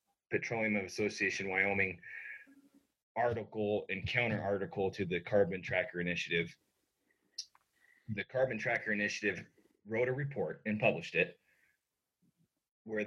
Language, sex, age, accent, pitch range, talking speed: English, male, 30-49, American, 95-120 Hz, 105 wpm